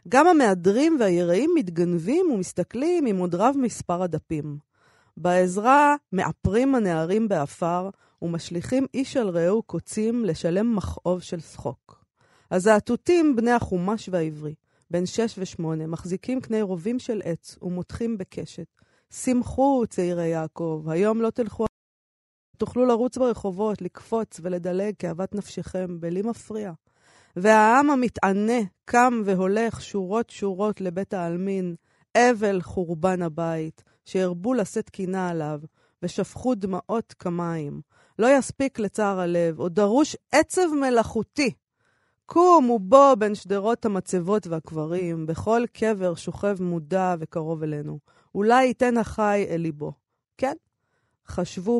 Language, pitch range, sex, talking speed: Hebrew, 175-230 Hz, female, 110 wpm